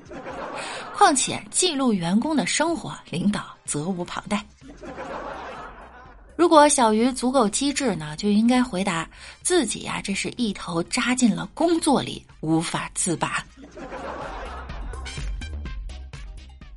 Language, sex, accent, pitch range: Chinese, female, native, 200-305 Hz